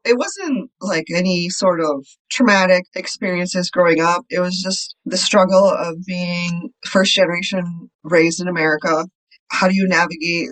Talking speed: 150 wpm